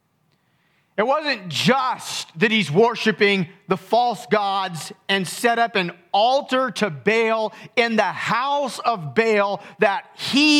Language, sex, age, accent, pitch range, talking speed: English, male, 40-59, American, 180-240 Hz, 130 wpm